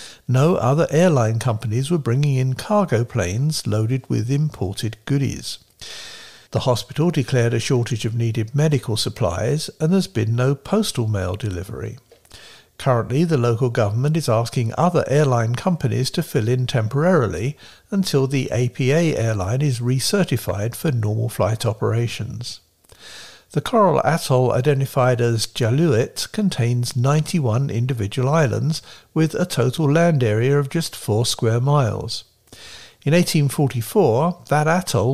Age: 60-79